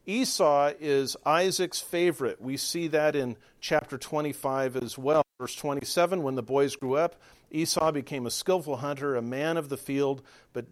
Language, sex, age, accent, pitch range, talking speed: English, male, 50-69, American, 135-170 Hz, 170 wpm